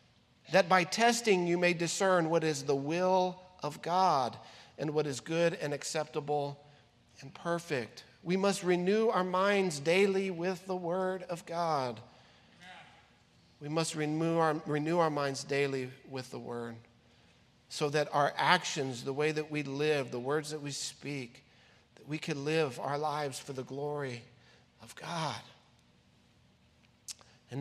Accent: American